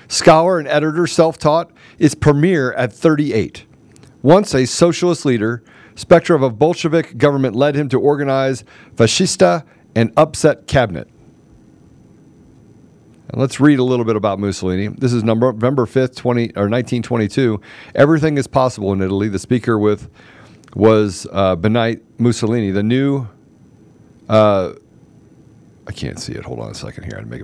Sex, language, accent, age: male, English, American, 50-69